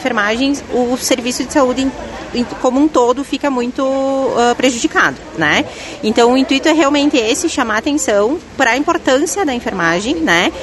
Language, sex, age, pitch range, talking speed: Portuguese, female, 30-49, 210-265 Hz, 150 wpm